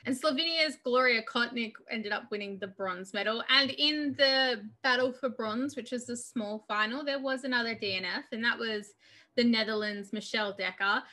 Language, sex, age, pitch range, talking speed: English, female, 10-29, 215-285 Hz, 175 wpm